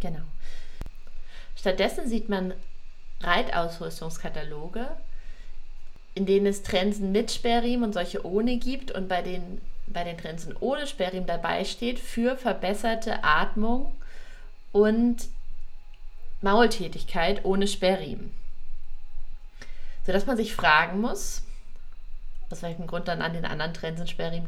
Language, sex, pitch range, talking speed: German, female, 180-220 Hz, 115 wpm